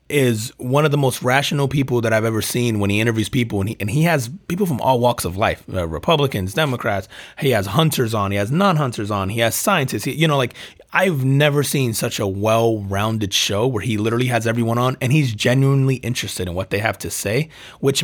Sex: male